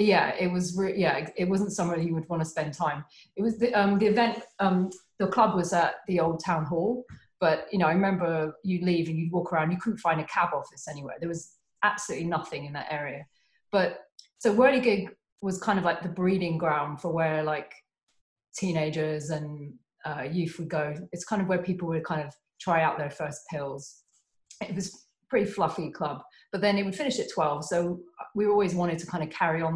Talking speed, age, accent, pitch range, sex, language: 220 wpm, 30-49, British, 155-195 Hz, female, English